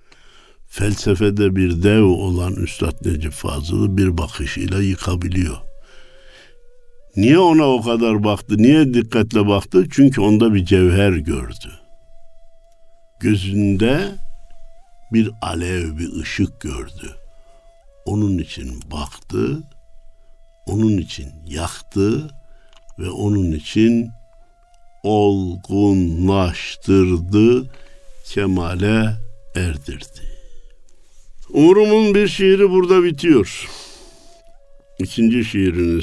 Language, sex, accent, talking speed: Turkish, male, native, 80 wpm